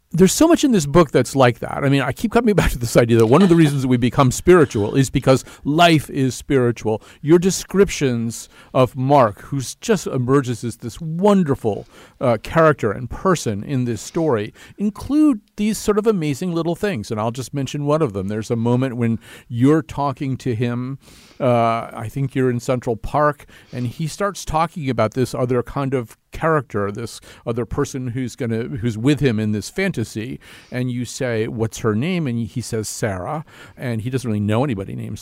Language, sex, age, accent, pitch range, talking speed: English, male, 50-69, American, 115-160 Hz, 200 wpm